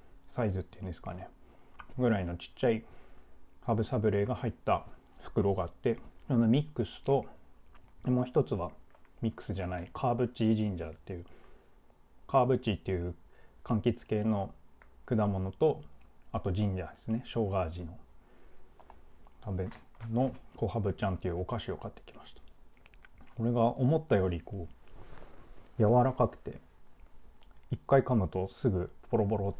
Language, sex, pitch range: Japanese, male, 90-120 Hz